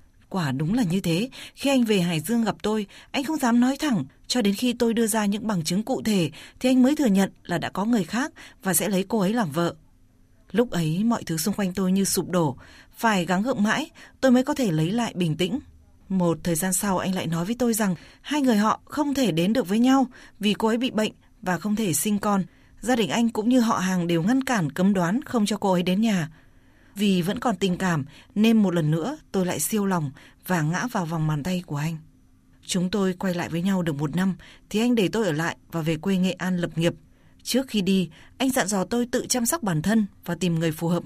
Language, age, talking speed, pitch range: Vietnamese, 20-39, 255 wpm, 175-230 Hz